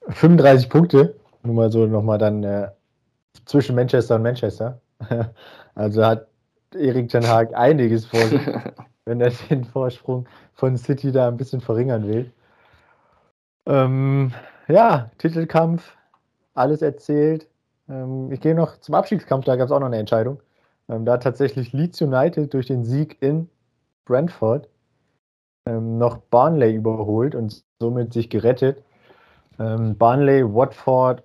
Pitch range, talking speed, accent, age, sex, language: 110-135 Hz, 135 wpm, German, 20-39, male, German